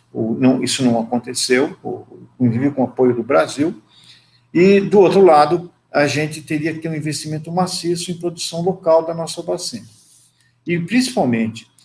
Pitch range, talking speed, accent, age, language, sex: 130-170 Hz, 155 wpm, Brazilian, 50-69, Portuguese, male